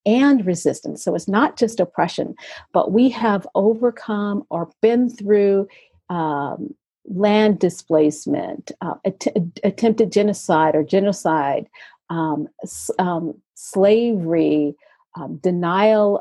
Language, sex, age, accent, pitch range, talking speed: English, female, 50-69, American, 170-225 Hz, 100 wpm